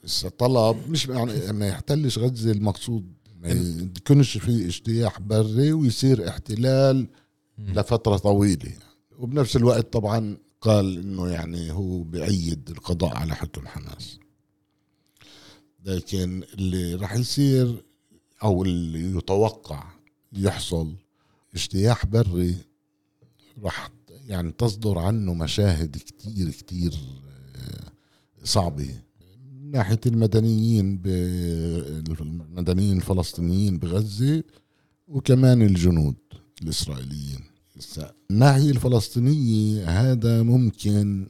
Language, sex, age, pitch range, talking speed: Arabic, male, 50-69, 85-115 Hz, 80 wpm